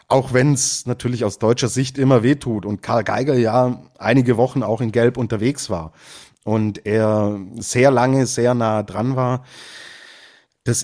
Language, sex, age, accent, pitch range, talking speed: German, male, 30-49, German, 105-130 Hz, 160 wpm